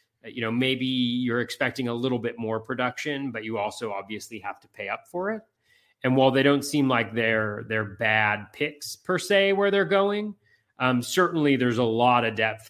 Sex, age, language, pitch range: male, 30-49, English, 115-150 Hz